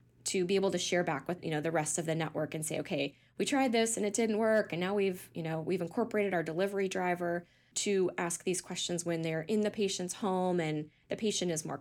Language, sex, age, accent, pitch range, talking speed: English, female, 10-29, American, 155-185 Hz, 250 wpm